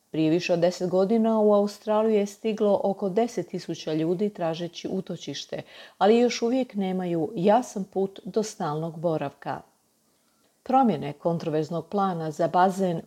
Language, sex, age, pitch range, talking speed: Croatian, female, 40-59, 170-215 Hz, 130 wpm